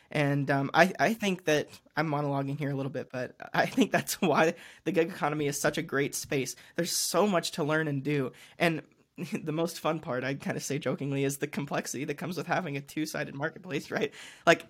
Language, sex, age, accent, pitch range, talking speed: English, male, 20-39, American, 140-165 Hz, 220 wpm